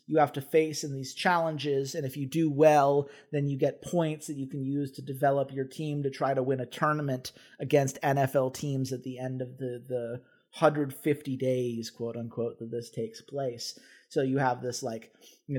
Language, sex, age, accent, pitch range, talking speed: English, male, 30-49, American, 130-160 Hz, 205 wpm